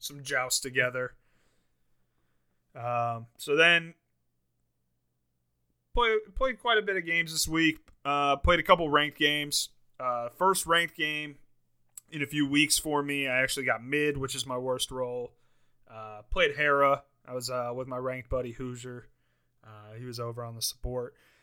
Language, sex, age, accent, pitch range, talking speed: English, male, 30-49, American, 120-145 Hz, 160 wpm